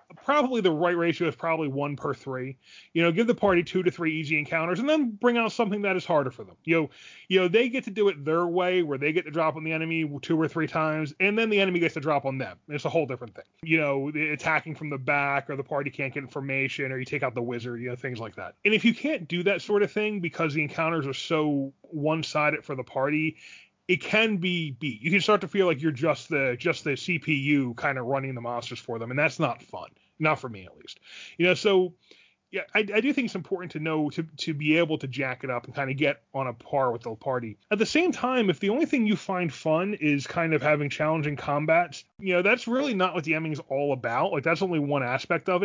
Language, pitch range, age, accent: English, 145-200 Hz, 30-49, American